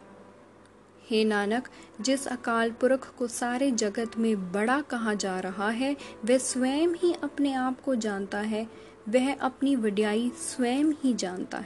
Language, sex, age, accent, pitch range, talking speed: Hindi, female, 20-39, native, 215-275 Hz, 145 wpm